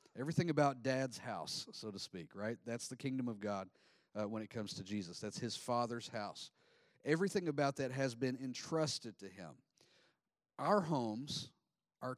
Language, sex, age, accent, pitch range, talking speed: English, male, 40-59, American, 115-150 Hz, 170 wpm